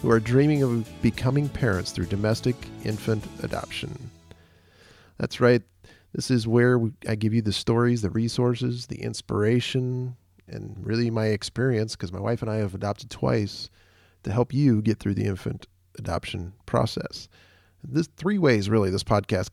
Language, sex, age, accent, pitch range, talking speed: English, male, 40-59, American, 95-120 Hz, 155 wpm